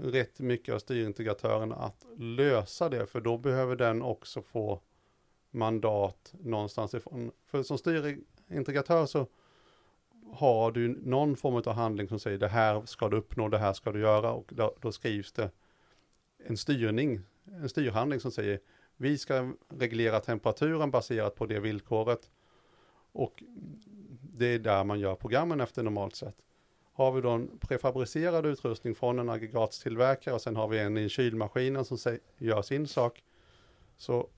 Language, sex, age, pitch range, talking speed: Swedish, male, 40-59, 110-130 Hz, 155 wpm